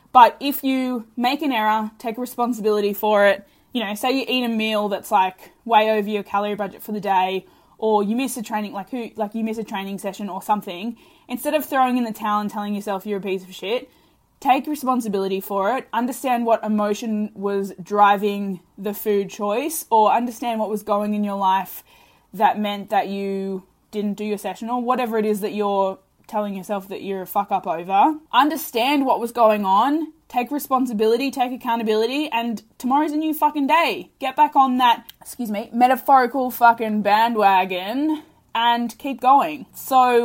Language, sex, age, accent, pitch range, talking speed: English, female, 10-29, Australian, 210-265 Hz, 190 wpm